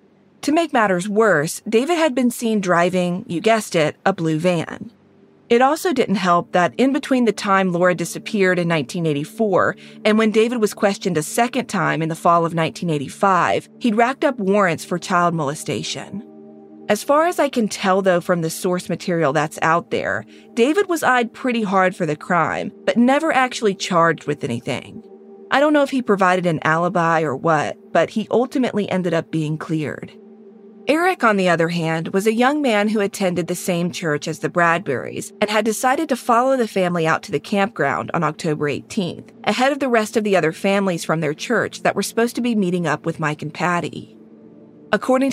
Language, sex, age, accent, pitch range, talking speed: English, female, 30-49, American, 165-225 Hz, 195 wpm